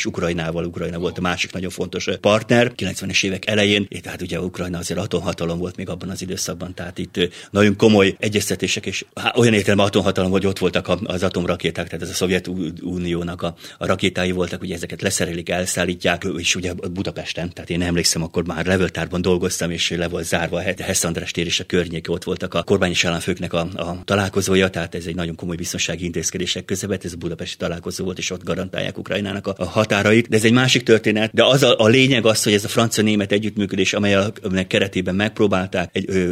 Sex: male